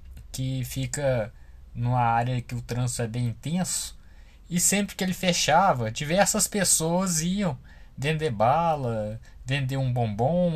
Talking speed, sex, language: 130 wpm, male, Portuguese